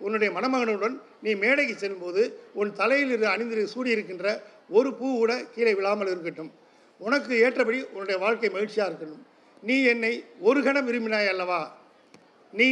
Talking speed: 135 wpm